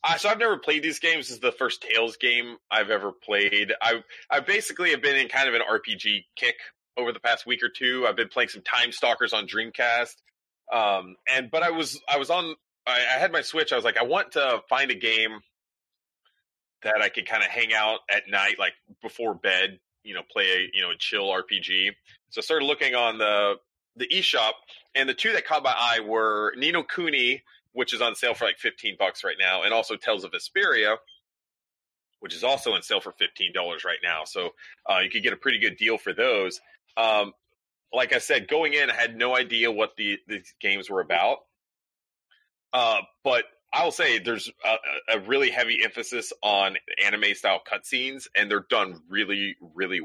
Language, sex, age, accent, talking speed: English, male, 30-49, American, 205 wpm